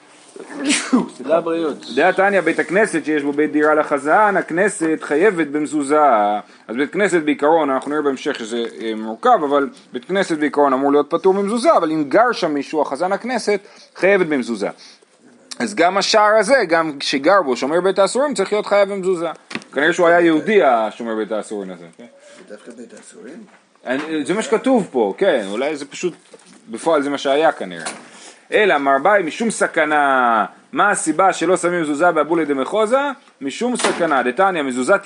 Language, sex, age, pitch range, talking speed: Hebrew, male, 30-49, 140-200 Hz, 115 wpm